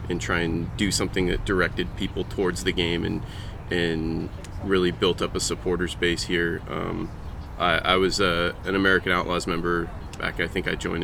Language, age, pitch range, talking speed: English, 20-39, 85-95 Hz, 185 wpm